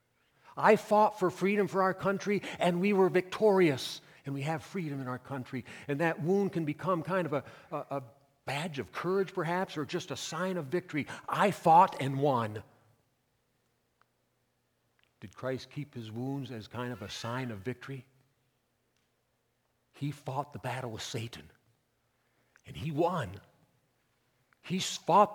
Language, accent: English, American